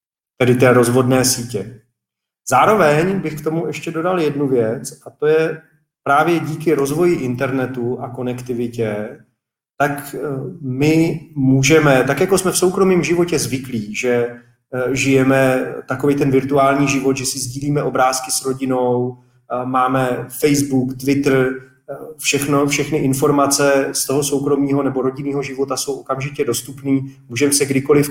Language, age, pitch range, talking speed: Czech, 30-49, 130-155 Hz, 130 wpm